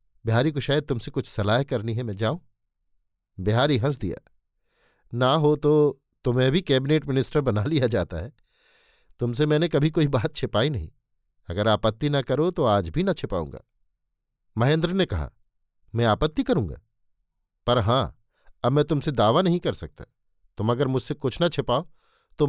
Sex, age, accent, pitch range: male, 50-69, native, 110-150 Hz